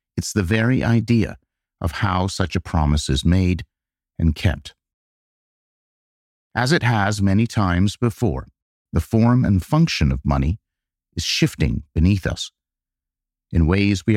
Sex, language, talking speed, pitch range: male, English, 135 wpm, 70-100 Hz